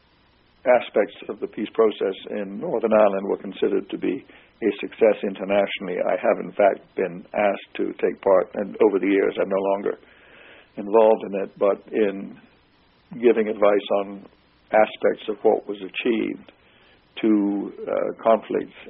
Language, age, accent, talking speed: English, 60-79, American, 150 wpm